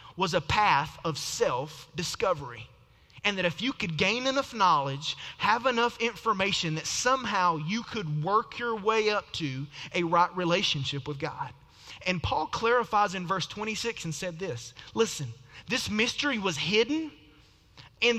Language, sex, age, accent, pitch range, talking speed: English, male, 30-49, American, 145-225 Hz, 150 wpm